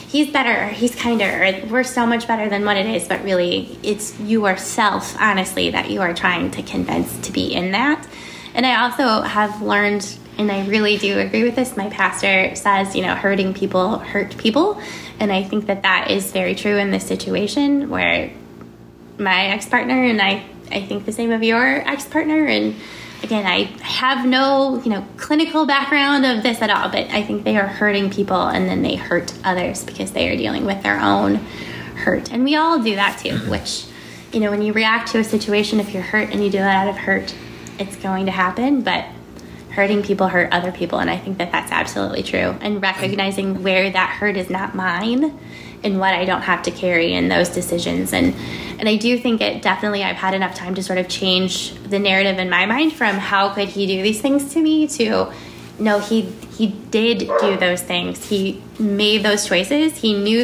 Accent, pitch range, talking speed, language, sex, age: American, 190-230 Hz, 205 wpm, English, female, 10-29